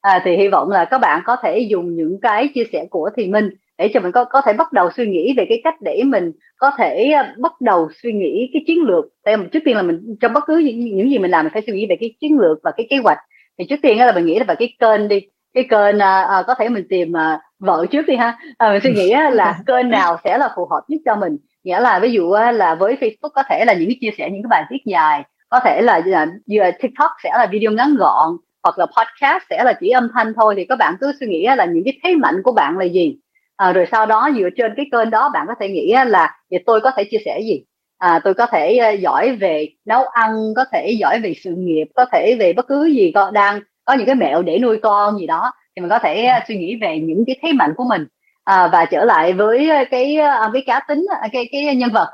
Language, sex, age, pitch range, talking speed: Vietnamese, female, 30-49, 210-300 Hz, 265 wpm